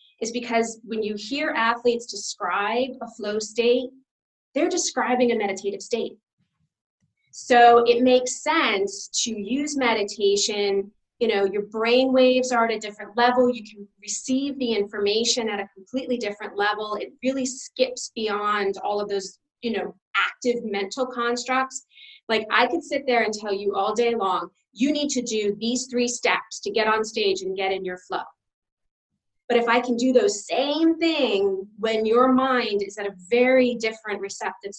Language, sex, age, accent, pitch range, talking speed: English, female, 30-49, American, 205-255 Hz, 170 wpm